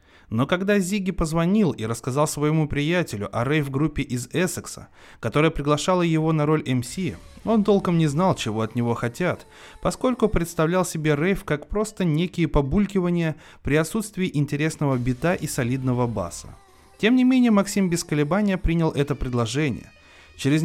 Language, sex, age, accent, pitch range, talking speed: Russian, male, 30-49, native, 110-165 Hz, 150 wpm